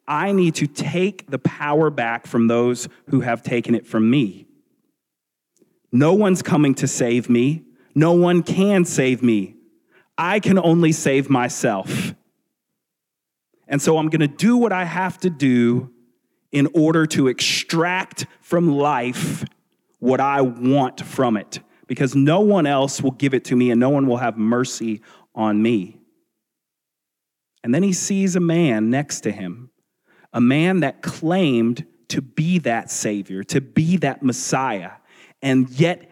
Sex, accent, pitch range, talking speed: male, American, 115-155 Hz, 155 wpm